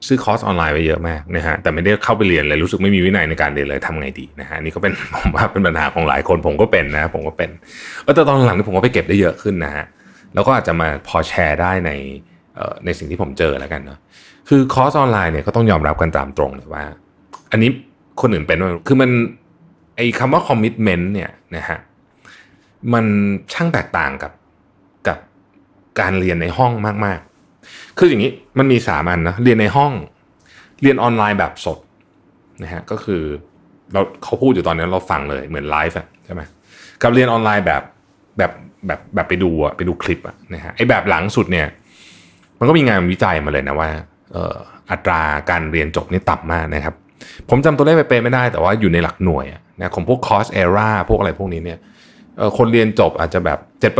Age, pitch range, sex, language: 20-39, 80-115 Hz, male, Thai